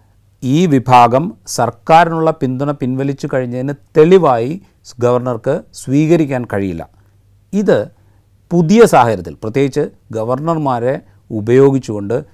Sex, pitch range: male, 110-145 Hz